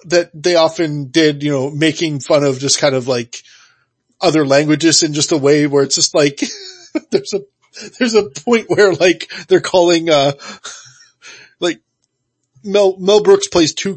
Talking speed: 170 wpm